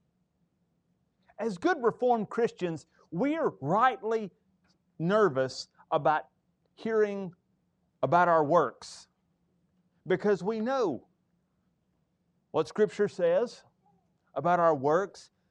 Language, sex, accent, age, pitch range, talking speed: English, male, American, 40-59, 170-220 Hz, 85 wpm